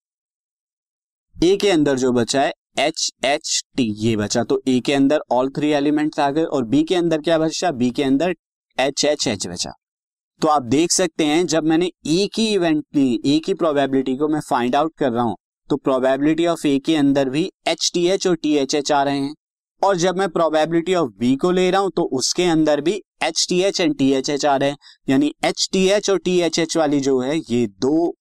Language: Hindi